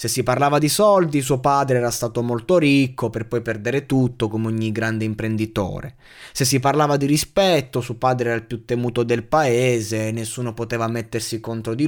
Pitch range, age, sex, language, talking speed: 110-145 Hz, 20-39, male, Italian, 185 wpm